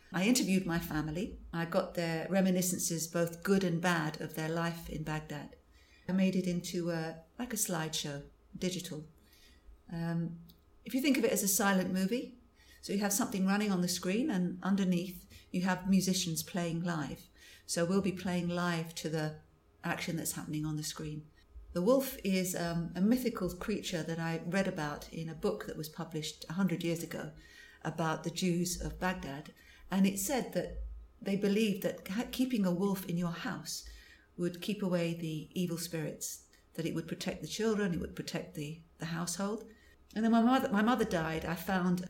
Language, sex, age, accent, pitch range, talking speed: English, female, 50-69, British, 160-195 Hz, 185 wpm